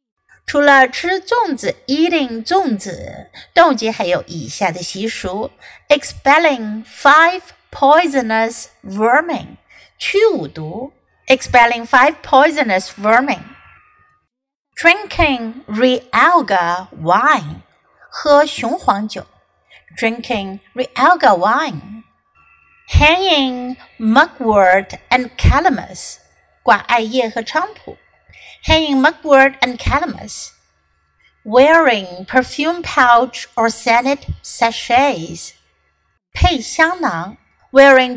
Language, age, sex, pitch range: Chinese, 50-69, female, 225-295 Hz